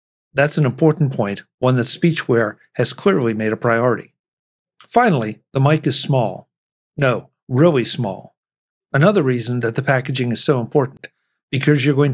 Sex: male